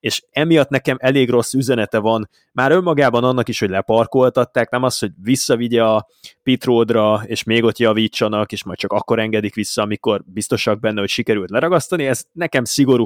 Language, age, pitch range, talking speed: Hungarian, 20-39, 110-135 Hz, 175 wpm